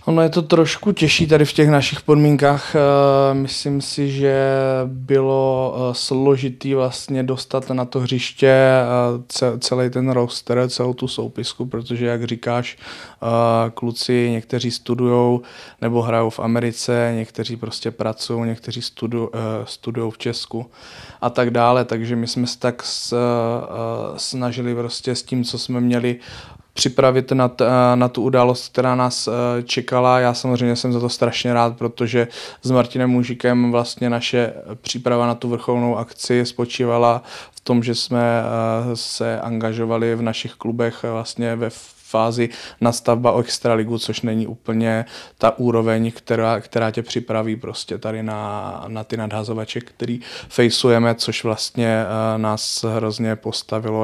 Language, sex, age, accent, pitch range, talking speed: Czech, male, 20-39, native, 115-125 Hz, 140 wpm